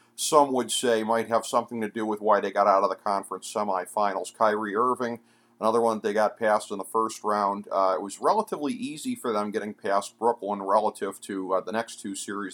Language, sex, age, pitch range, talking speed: English, male, 50-69, 105-120 Hz, 215 wpm